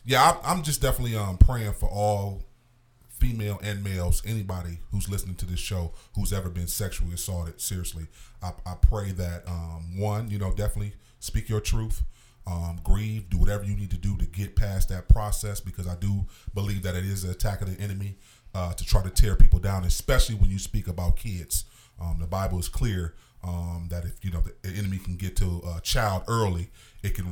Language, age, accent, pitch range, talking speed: English, 30-49, American, 90-105 Hz, 205 wpm